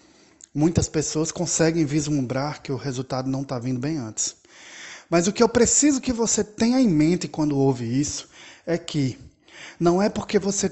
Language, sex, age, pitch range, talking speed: Portuguese, male, 20-39, 140-185 Hz, 175 wpm